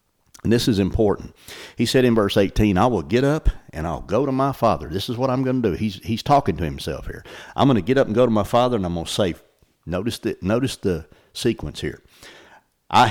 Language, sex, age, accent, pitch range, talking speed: English, male, 60-79, American, 90-125 Hz, 245 wpm